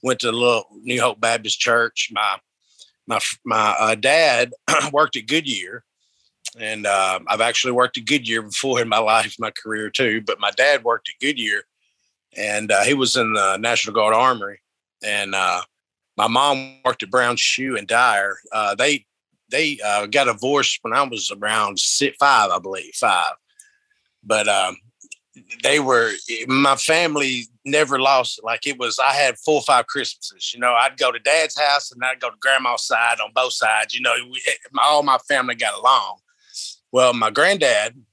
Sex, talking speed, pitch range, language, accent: male, 180 wpm, 115-145 Hz, English, American